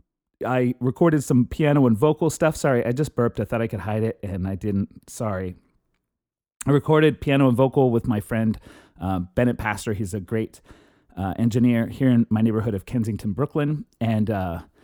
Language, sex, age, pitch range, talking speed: English, male, 30-49, 110-150 Hz, 185 wpm